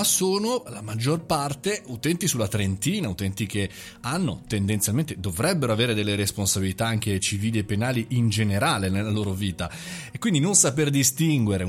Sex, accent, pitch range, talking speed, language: male, native, 105-140 Hz, 150 wpm, Italian